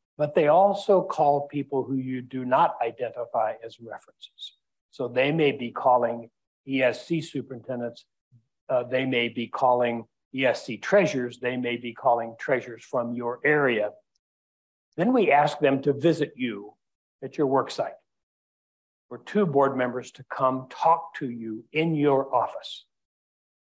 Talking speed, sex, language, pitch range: 145 wpm, male, English, 120-145 Hz